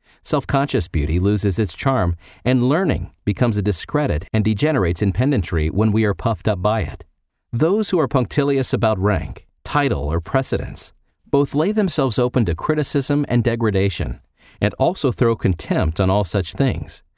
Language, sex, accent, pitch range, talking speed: English, male, American, 90-130 Hz, 160 wpm